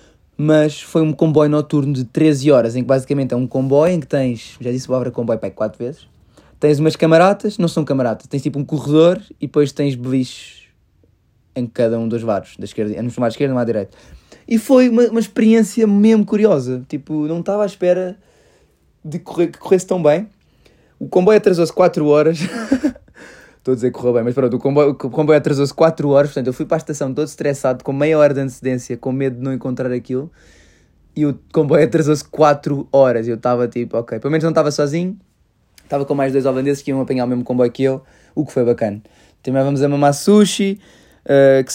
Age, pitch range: 20-39, 125-155 Hz